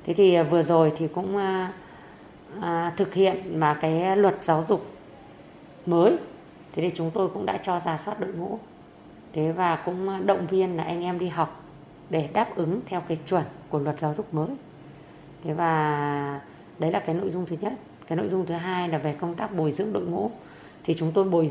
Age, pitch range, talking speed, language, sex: 20-39, 160-195 Hz, 205 wpm, Vietnamese, female